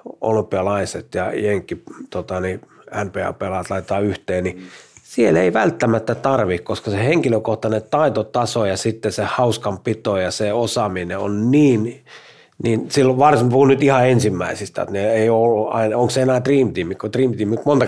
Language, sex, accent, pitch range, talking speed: Finnish, male, native, 105-135 Hz, 150 wpm